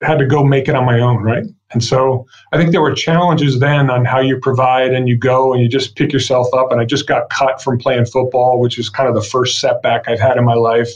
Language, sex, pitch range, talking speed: English, male, 120-150 Hz, 275 wpm